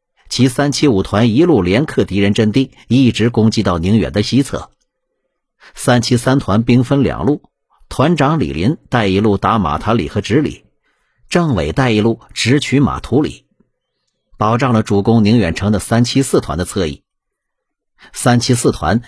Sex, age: male, 50-69